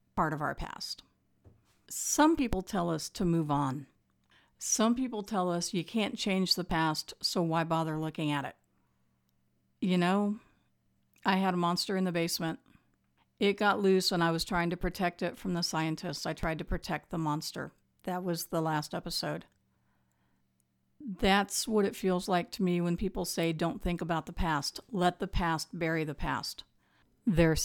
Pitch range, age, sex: 155-220 Hz, 50-69, female